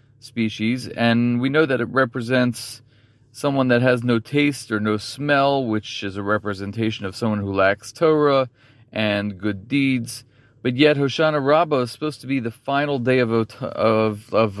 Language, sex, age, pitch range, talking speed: English, male, 30-49, 110-130 Hz, 170 wpm